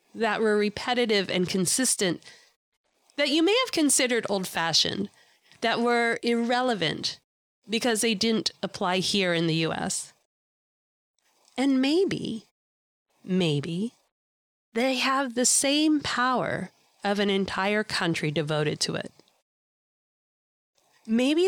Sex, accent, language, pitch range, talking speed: female, American, English, 175-245 Hz, 110 wpm